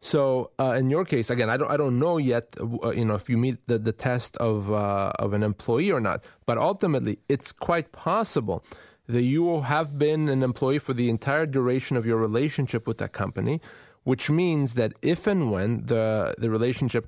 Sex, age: male, 30-49